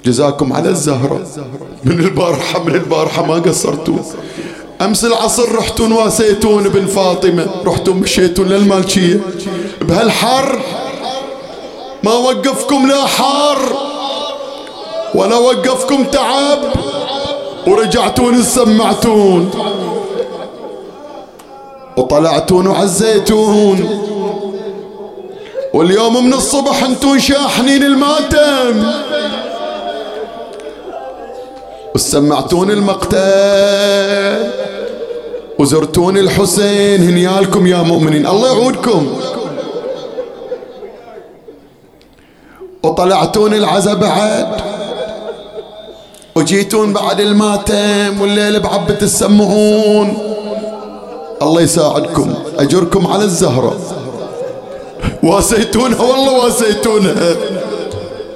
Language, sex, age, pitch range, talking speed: English, male, 30-49, 195-270 Hz, 65 wpm